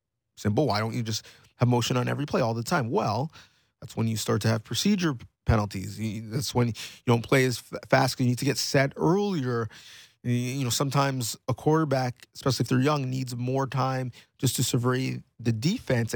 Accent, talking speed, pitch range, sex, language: American, 195 wpm, 115-145 Hz, male, English